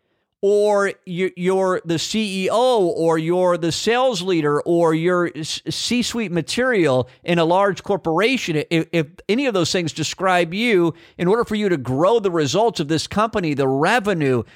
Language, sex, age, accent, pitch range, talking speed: English, male, 50-69, American, 150-185 Hz, 155 wpm